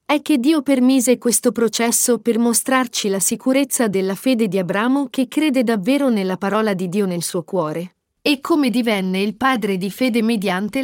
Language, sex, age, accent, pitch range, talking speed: Italian, female, 40-59, native, 205-260 Hz, 175 wpm